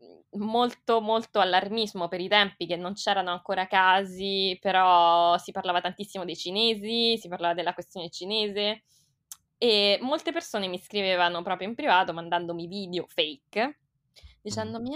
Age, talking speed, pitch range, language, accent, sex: 20-39, 135 wpm, 175-220 Hz, Italian, native, female